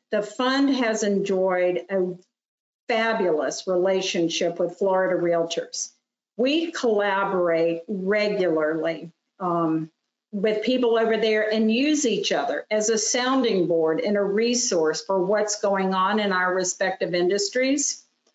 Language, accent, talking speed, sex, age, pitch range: English, American, 120 wpm, female, 50-69, 190-235 Hz